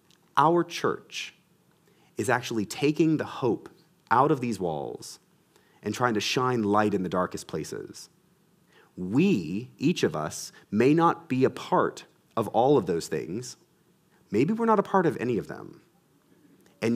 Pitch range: 110-165 Hz